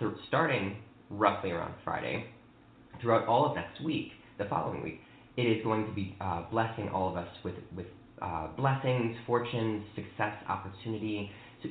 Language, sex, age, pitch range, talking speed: English, male, 20-39, 110-130 Hz, 155 wpm